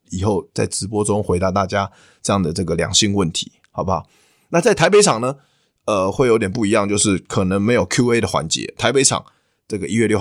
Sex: male